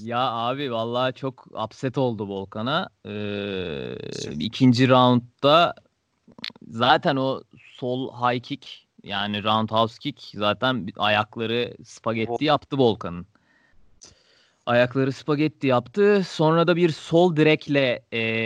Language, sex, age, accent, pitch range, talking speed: Turkish, male, 20-39, native, 120-165 Hz, 105 wpm